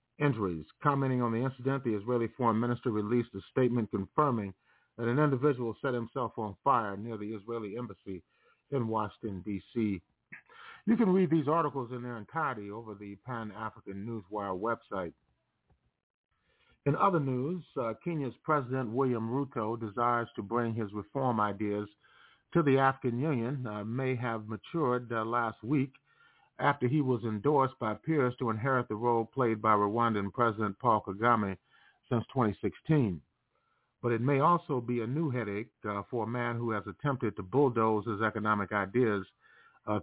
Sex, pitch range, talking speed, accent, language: male, 110-130 Hz, 155 wpm, American, English